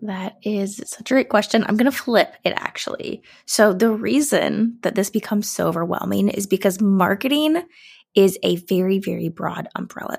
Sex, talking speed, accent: female, 170 wpm, American